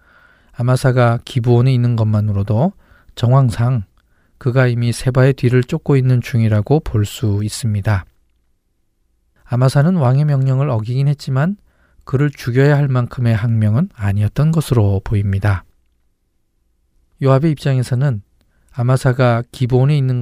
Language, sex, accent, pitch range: Korean, male, native, 110-135 Hz